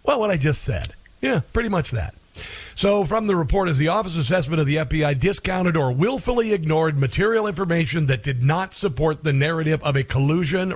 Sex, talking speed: male, 195 wpm